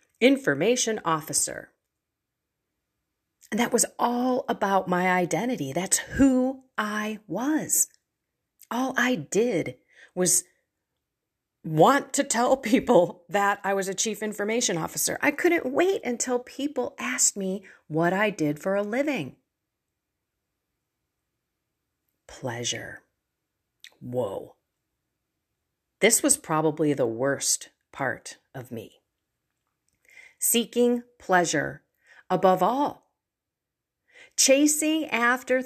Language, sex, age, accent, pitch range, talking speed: English, female, 40-59, American, 180-265 Hz, 95 wpm